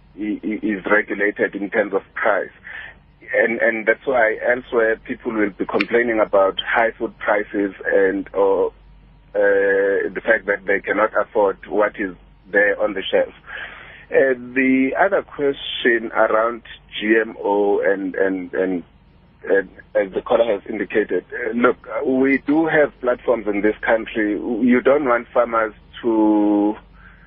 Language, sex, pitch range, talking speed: English, male, 105-170 Hz, 140 wpm